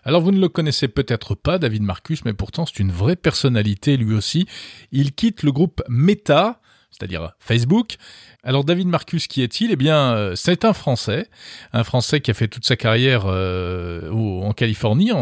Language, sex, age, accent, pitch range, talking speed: French, male, 40-59, French, 110-150 Hz, 180 wpm